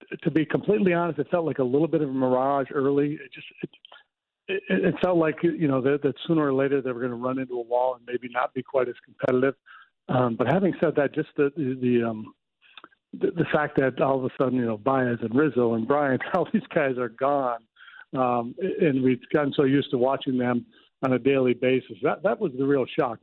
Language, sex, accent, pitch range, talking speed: English, male, American, 125-150 Hz, 230 wpm